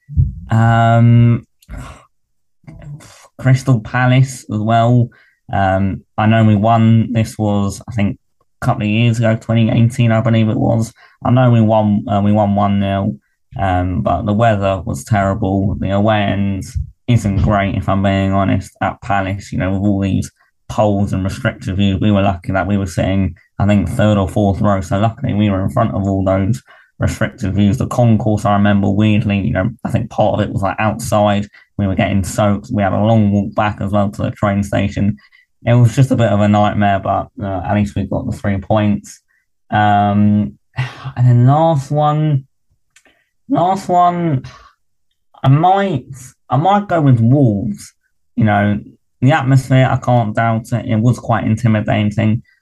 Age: 20-39